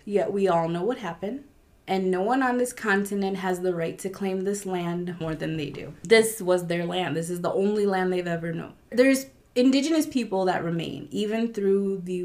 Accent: American